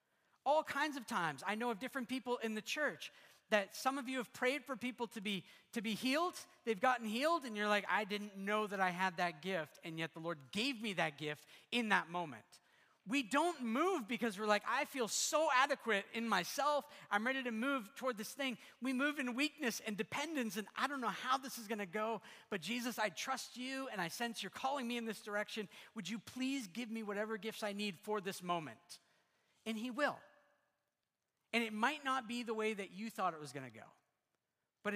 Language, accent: English, American